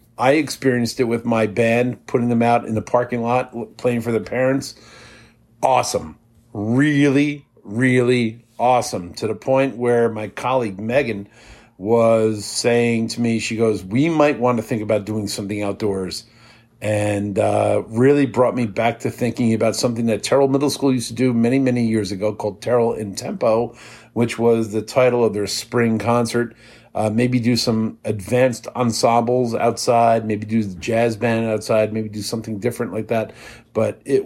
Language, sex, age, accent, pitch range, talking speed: English, male, 50-69, American, 110-125 Hz, 170 wpm